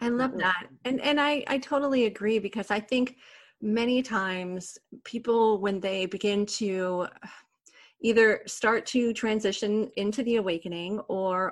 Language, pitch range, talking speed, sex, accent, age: English, 185-230 Hz, 140 wpm, female, American, 30-49